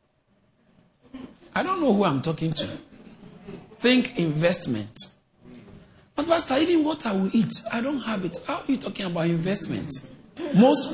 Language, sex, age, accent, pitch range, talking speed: English, male, 50-69, Nigerian, 155-255 Hz, 150 wpm